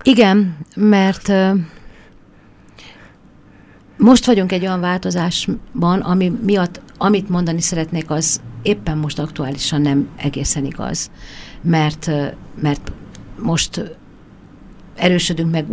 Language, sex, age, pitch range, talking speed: Hungarian, female, 50-69, 145-180 Hz, 90 wpm